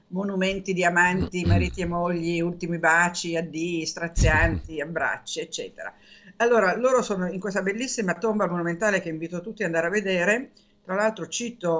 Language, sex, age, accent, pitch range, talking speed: Italian, female, 50-69, native, 170-215 Hz, 155 wpm